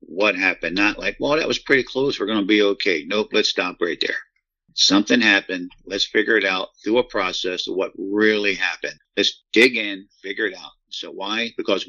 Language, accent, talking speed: English, American, 205 wpm